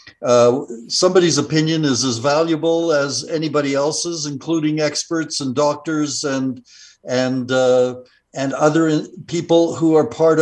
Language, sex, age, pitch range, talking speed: English, male, 60-79, 125-160 Hz, 130 wpm